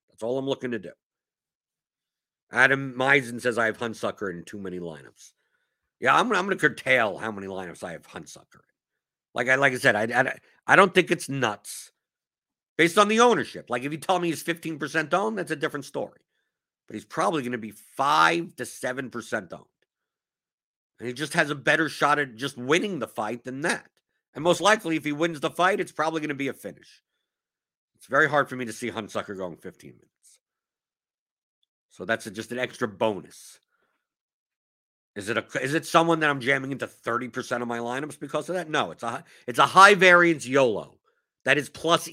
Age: 50-69